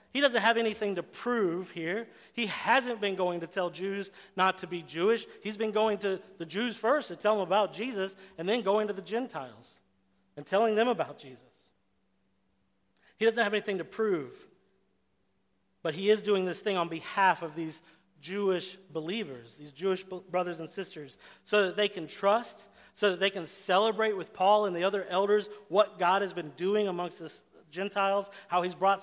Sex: male